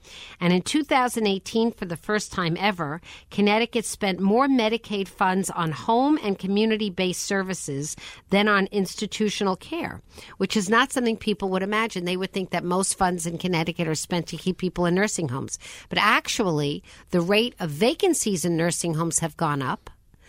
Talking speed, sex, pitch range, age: 170 wpm, female, 170-215 Hz, 50-69